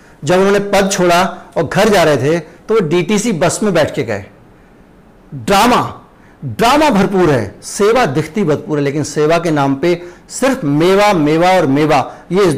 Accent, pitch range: native, 150-195 Hz